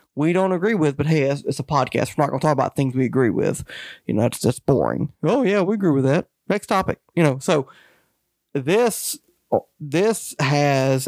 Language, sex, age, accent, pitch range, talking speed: English, male, 30-49, American, 135-160 Hz, 200 wpm